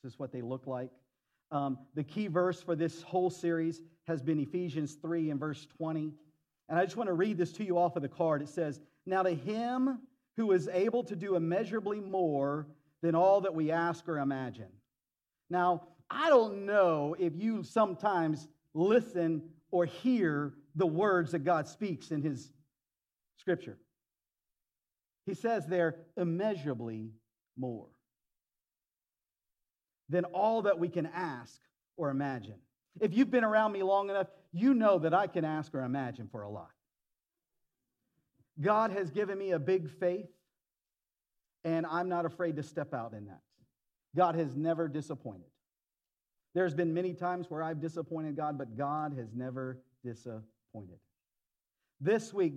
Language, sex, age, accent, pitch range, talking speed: English, male, 50-69, American, 140-185 Hz, 155 wpm